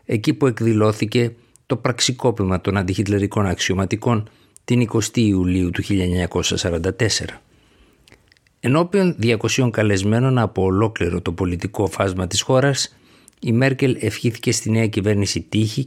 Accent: native